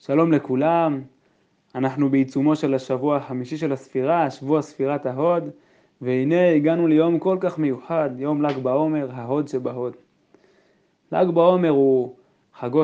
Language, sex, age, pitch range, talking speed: Hebrew, male, 20-39, 130-155 Hz, 125 wpm